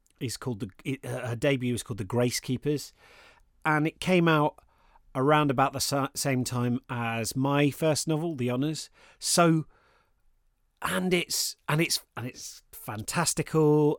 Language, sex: English, male